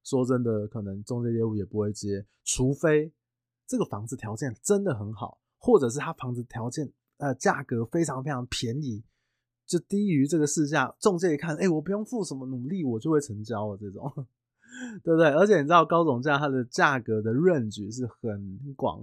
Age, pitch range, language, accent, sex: 20-39, 110-150 Hz, Chinese, native, male